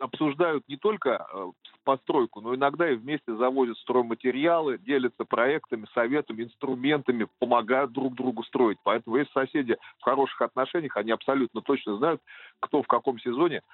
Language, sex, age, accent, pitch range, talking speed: Russian, male, 40-59, native, 120-170 Hz, 140 wpm